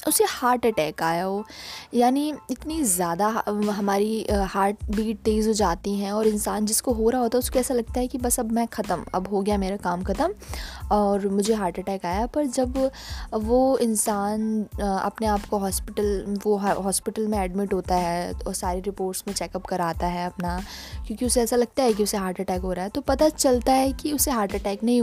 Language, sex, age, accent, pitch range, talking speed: Hindi, female, 10-29, native, 195-240 Hz, 205 wpm